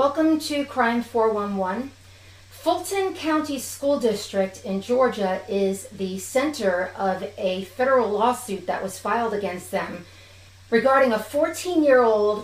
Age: 40-59